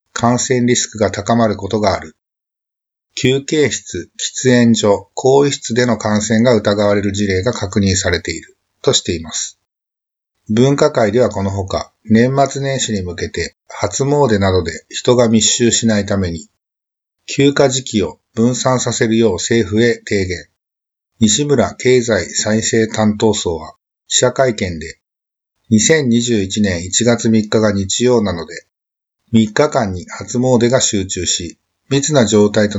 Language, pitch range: Japanese, 100-125 Hz